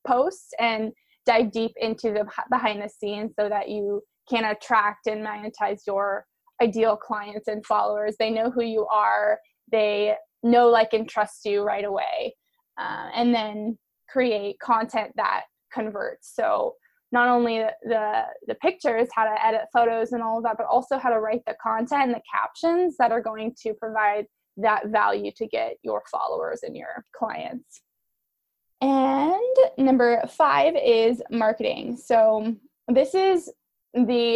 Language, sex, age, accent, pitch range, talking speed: English, female, 20-39, American, 210-250 Hz, 155 wpm